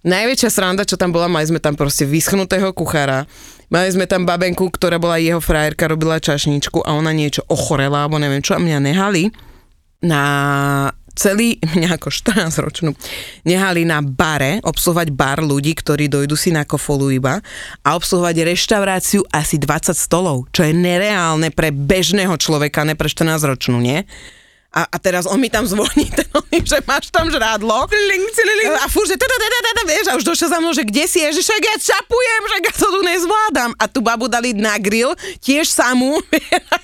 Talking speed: 175 wpm